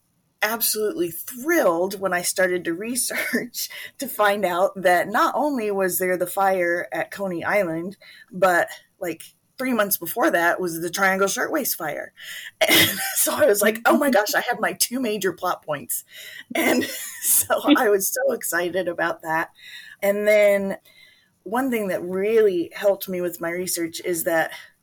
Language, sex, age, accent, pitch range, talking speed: English, female, 30-49, American, 170-205 Hz, 160 wpm